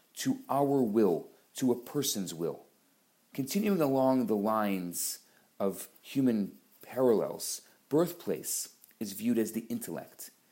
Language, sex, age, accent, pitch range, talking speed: English, male, 40-59, Canadian, 115-155 Hz, 115 wpm